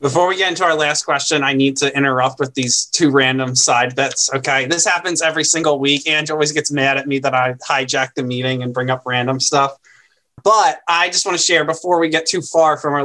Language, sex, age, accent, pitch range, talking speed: English, male, 20-39, American, 135-165 Hz, 240 wpm